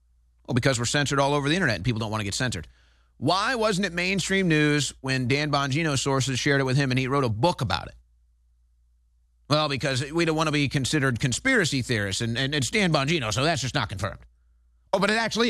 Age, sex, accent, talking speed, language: 30-49, male, American, 230 wpm, English